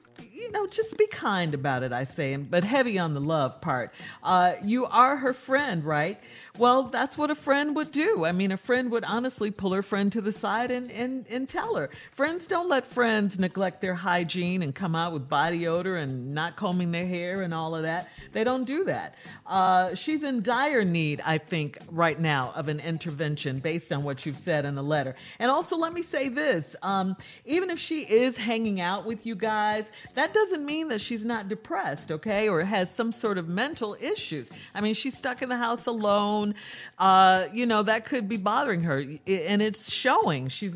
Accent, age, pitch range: American, 50-69, 165-245 Hz